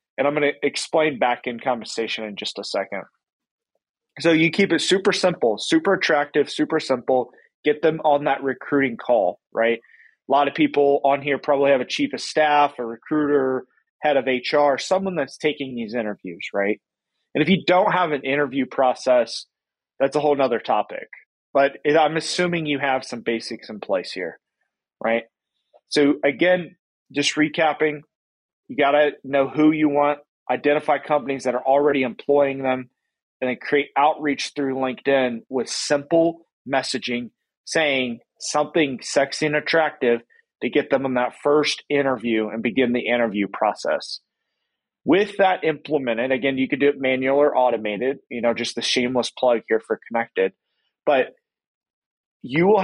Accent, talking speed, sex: American, 160 wpm, male